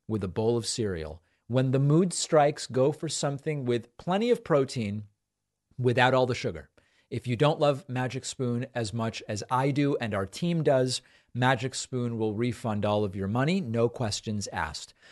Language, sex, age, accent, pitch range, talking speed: English, male, 40-59, American, 120-165 Hz, 185 wpm